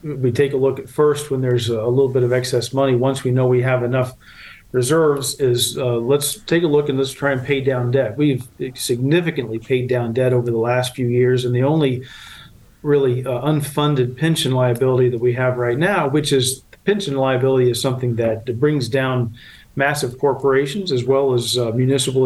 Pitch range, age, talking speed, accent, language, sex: 125-140 Hz, 40-59, 195 wpm, American, English, male